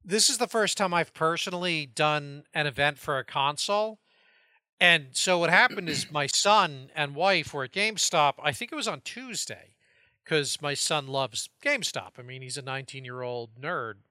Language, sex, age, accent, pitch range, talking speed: English, male, 40-59, American, 130-180 Hz, 180 wpm